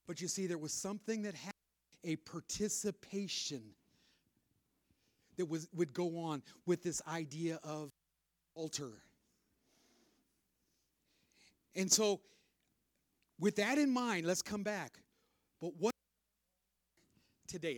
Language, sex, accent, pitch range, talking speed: English, male, American, 190-315 Hz, 110 wpm